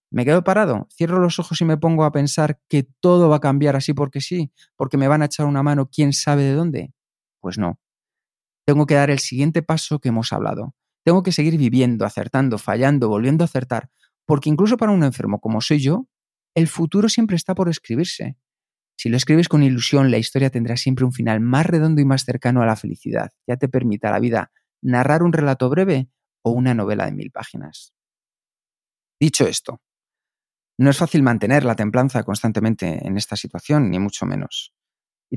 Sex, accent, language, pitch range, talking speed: male, Spanish, Spanish, 120-150 Hz, 195 wpm